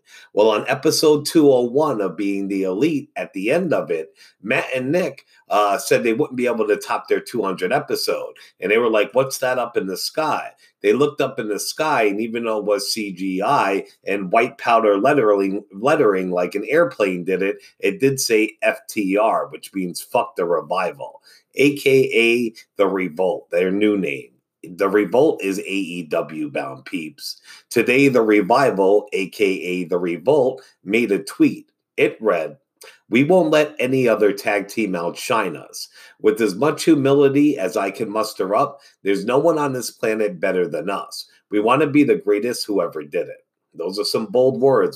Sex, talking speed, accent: male, 180 wpm, American